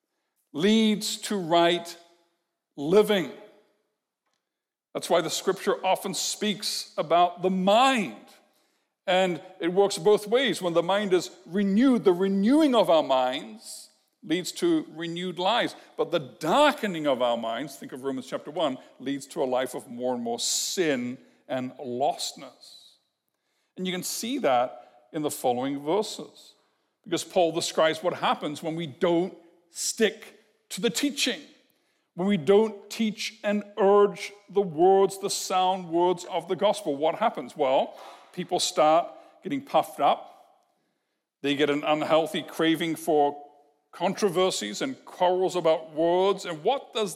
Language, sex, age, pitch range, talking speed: English, male, 60-79, 160-210 Hz, 140 wpm